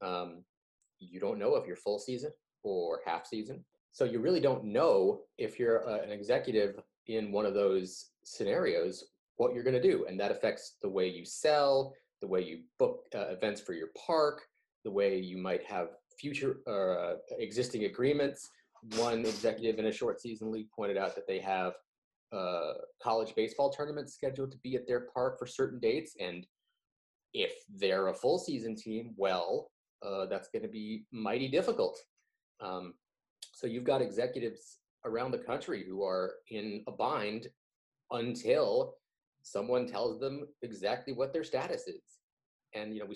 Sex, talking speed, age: male, 170 wpm, 30-49